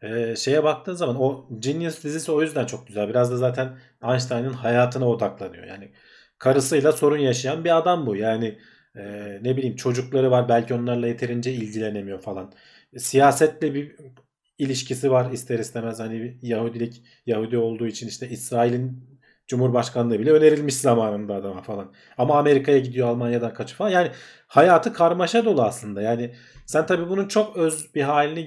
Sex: male